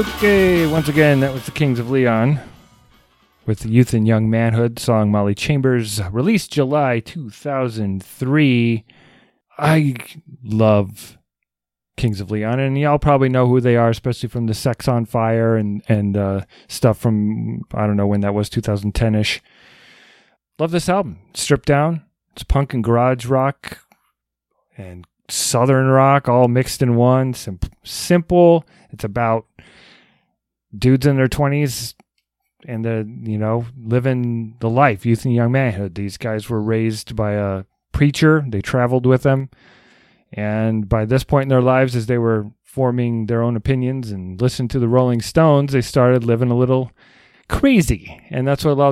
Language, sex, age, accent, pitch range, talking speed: English, male, 30-49, American, 110-135 Hz, 155 wpm